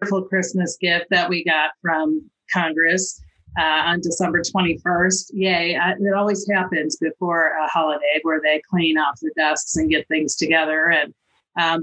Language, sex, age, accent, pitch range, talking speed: English, female, 40-59, American, 155-190 Hz, 155 wpm